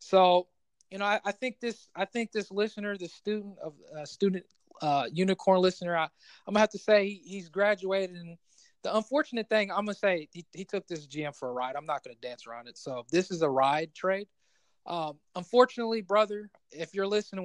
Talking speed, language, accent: 210 wpm, English, American